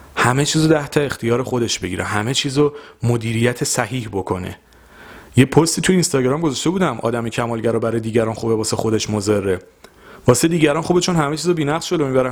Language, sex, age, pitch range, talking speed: Persian, male, 30-49, 110-135 Hz, 175 wpm